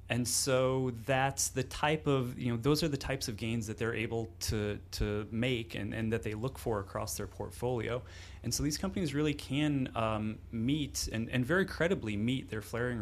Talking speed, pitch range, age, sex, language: 205 wpm, 100-130 Hz, 30-49, male, English